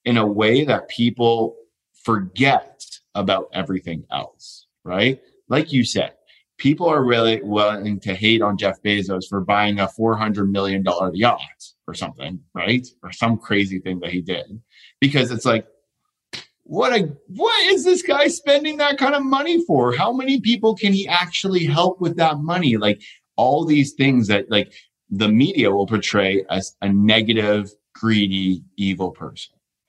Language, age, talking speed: English, 30-49, 165 wpm